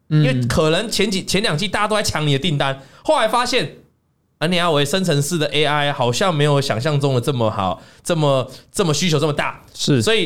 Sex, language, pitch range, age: male, Chinese, 135-205 Hz, 20-39